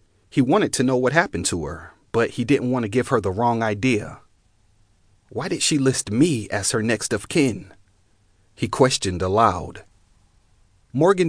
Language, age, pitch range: English, 40-59, 100-135 Hz